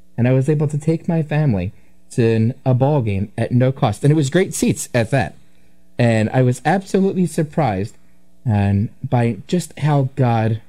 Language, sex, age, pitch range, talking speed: English, male, 20-39, 100-135 Hz, 180 wpm